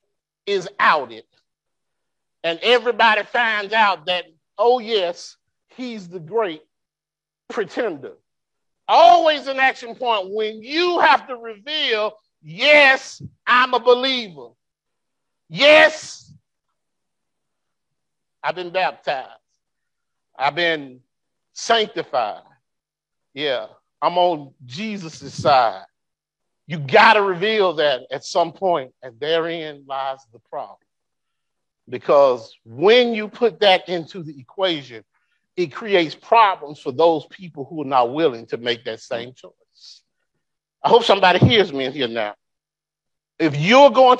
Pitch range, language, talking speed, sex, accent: 165-235 Hz, English, 115 wpm, male, American